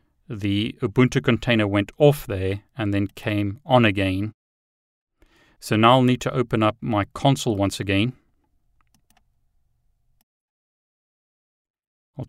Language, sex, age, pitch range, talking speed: English, male, 30-49, 100-120 Hz, 110 wpm